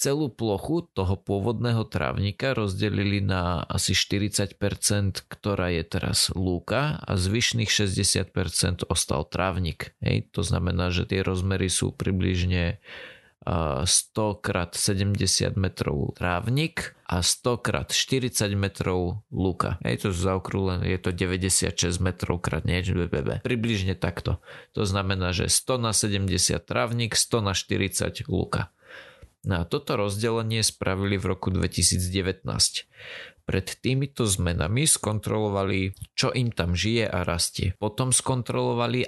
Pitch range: 90-120 Hz